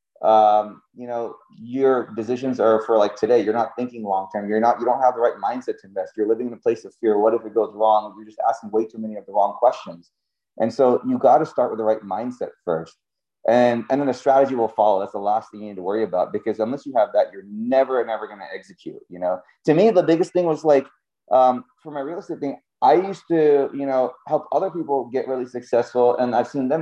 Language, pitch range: English, 115-155 Hz